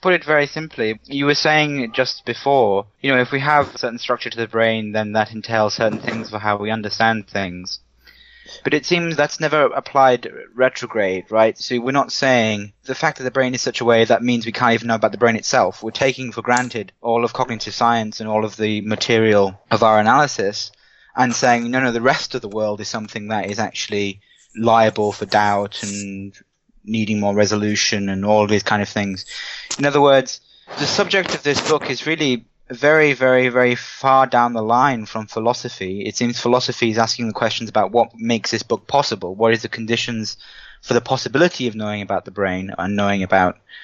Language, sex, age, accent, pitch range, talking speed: English, male, 20-39, British, 105-130 Hz, 205 wpm